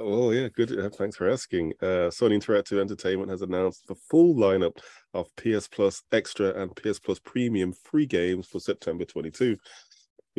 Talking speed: 160 wpm